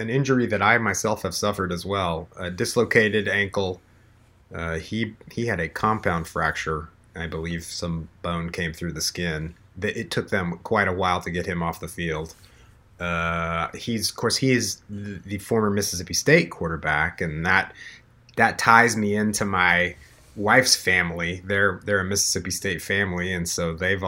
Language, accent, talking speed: English, American, 170 wpm